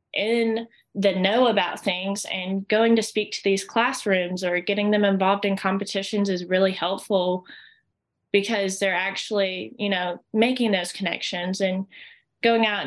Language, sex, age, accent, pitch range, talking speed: English, female, 20-39, American, 190-220 Hz, 150 wpm